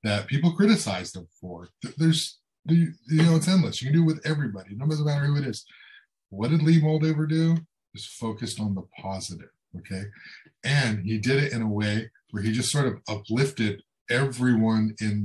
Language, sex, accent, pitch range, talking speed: English, male, American, 100-145 Hz, 185 wpm